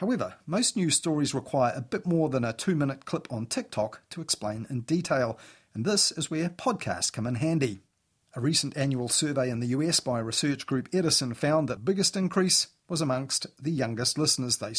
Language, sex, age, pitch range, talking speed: English, male, 40-59, 125-165 Hz, 190 wpm